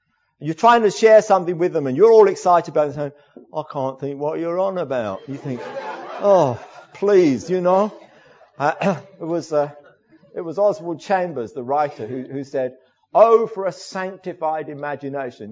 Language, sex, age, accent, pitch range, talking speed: English, male, 50-69, British, 155-235 Hz, 180 wpm